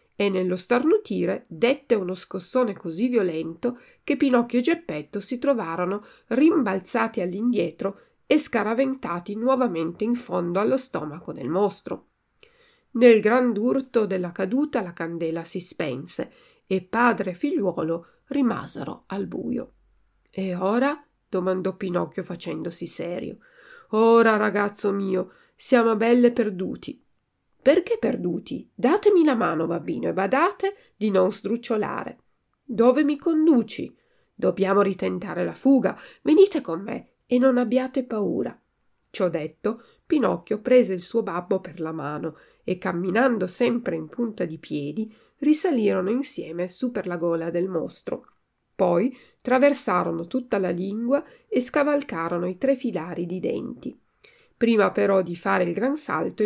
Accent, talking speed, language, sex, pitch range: native, 130 wpm, Italian, female, 180-260 Hz